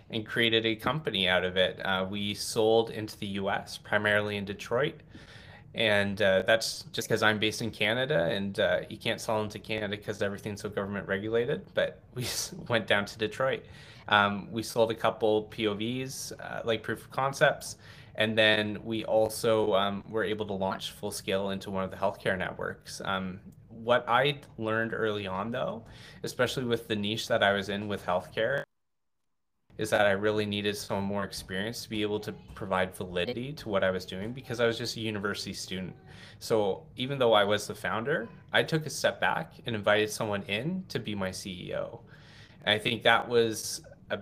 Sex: male